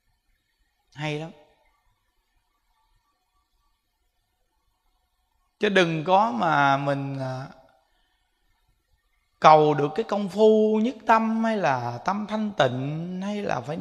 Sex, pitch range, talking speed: male, 155-225 Hz, 95 wpm